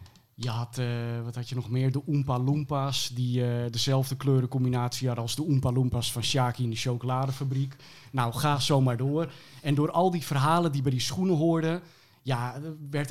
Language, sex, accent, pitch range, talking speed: Dutch, male, Dutch, 125-145 Hz, 190 wpm